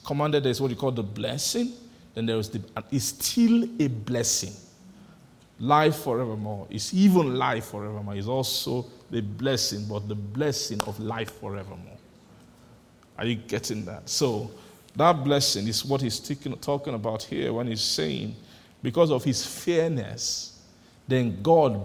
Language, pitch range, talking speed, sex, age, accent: English, 110-145 Hz, 150 wpm, male, 50-69, Nigerian